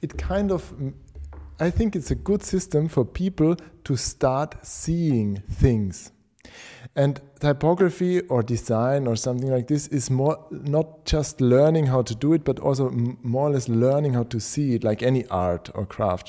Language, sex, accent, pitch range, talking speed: English, male, German, 115-145 Hz, 175 wpm